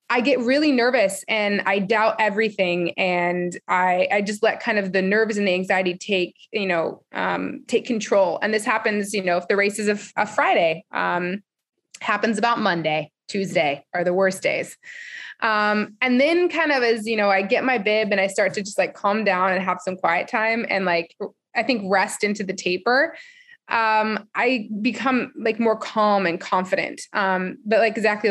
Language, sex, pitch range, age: English, female, 185-225 Hz, 20-39